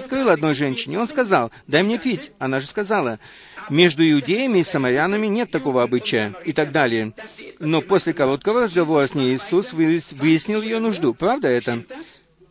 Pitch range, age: 150-210 Hz, 50-69